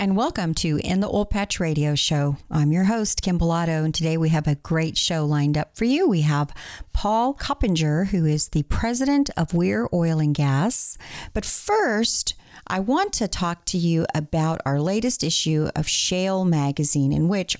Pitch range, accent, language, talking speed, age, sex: 150-190 Hz, American, English, 185 wpm, 50-69, female